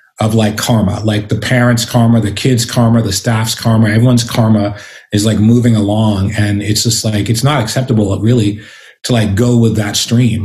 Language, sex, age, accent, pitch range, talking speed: English, male, 30-49, American, 105-120 Hz, 190 wpm